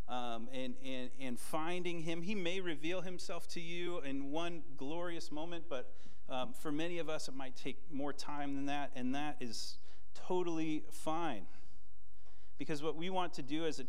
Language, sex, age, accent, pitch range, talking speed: English, male, 40-59, American, 100-160 Hz, 180 wpm